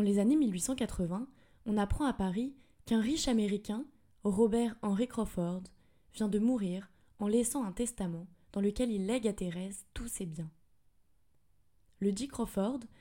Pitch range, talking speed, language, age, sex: 185-235 Hz, 150 wpm, French, 20-39, female